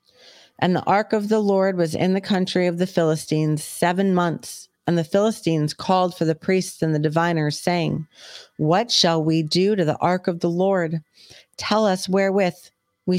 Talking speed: 180 wpm